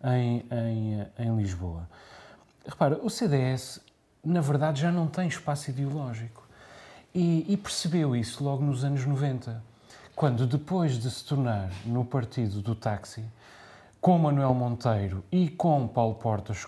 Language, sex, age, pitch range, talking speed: Portuguese, male, 30-49, 115-155 Hz, 135 wpm